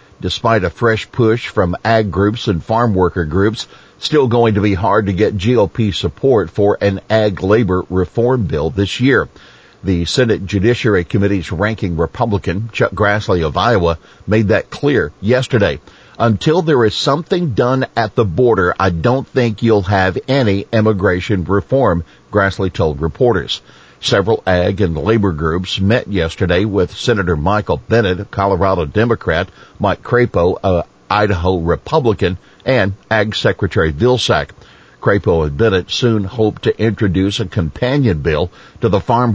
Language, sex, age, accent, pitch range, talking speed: English, male, 50-69, American, 95-120 Hz, 150 wpm